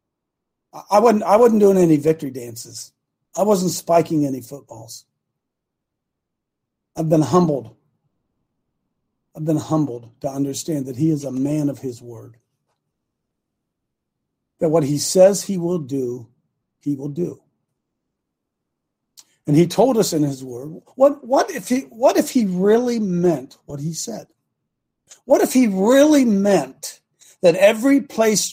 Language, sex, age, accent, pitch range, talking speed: English, male, 50-69, American, 145-220 Hz, 140 wpm